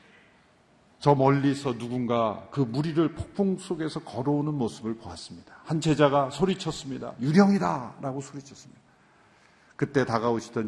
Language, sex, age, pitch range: Korean, male, 50-69, 115-160 Hz